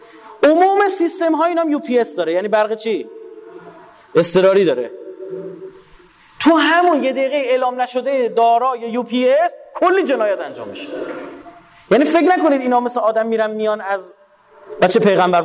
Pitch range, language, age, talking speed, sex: 185-295 Hz, Persian, 30-49, 145 wpm, male